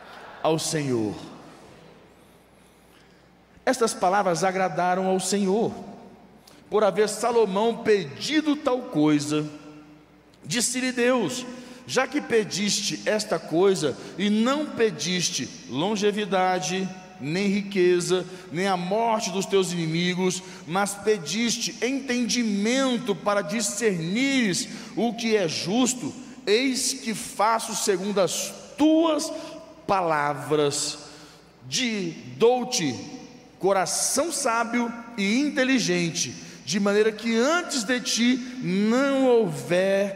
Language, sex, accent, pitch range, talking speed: Portuguese, male, Brazilian, 175-235 Hz, 95 wpm